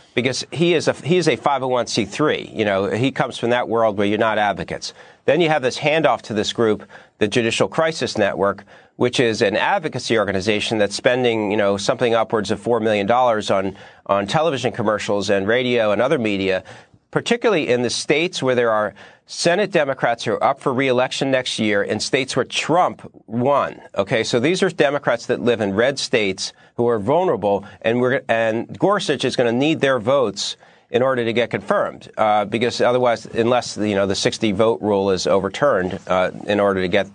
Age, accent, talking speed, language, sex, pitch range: 40-59, American, 195 wpm, English, male, 100-130 Hz